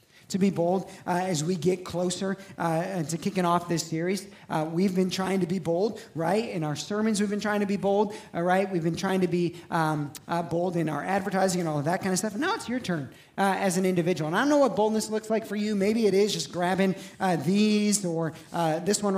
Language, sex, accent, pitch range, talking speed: English, male, American, 175-210 Hz, 250 wpm